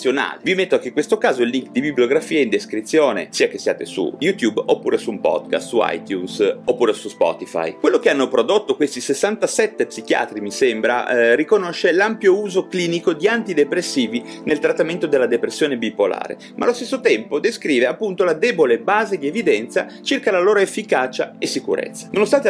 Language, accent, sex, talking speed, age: Italian, native, male, 175 wpm, 30-49